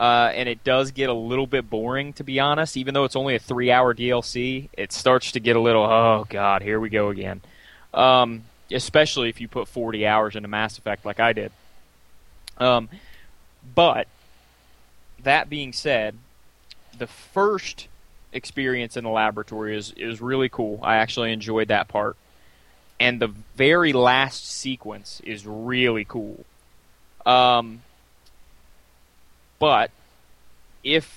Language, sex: English, male